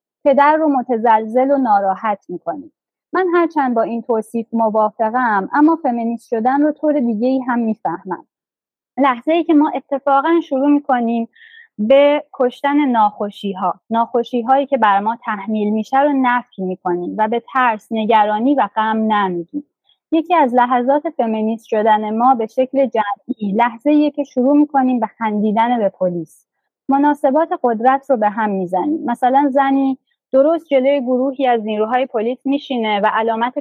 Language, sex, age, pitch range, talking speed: Persian, female, 30-49, 215-275 Hz, 150 wpm